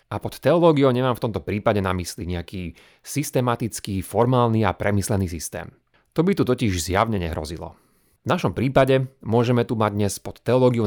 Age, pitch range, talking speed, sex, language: 30-49, 100-130 Hz, 165 wpm, male, Slovak